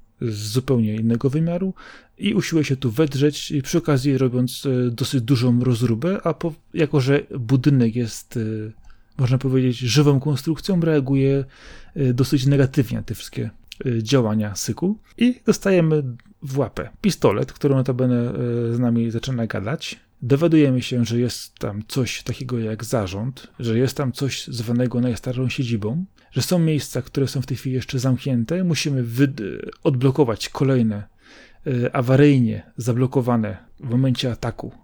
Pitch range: 120-145 Hz